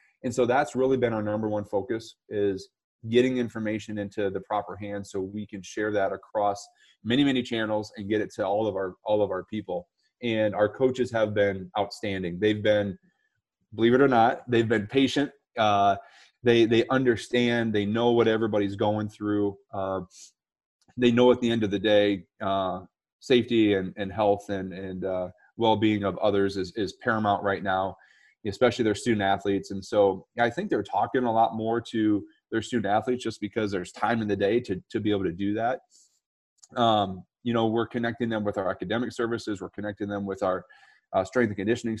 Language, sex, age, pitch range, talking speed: English, male, 30-49, 100-115 Hz, 195 wpm